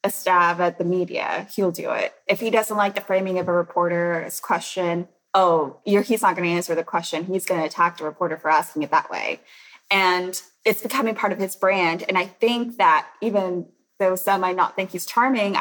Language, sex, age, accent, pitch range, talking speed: English, female, 20-39, American, 175-205 Hz, 215 wpm